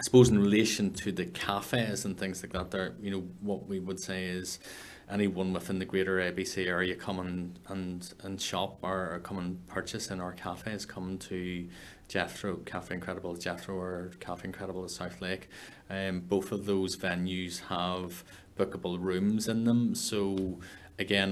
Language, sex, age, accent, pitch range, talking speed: English, male, 20-39, Irish, 90-95 Hz, 170 wpm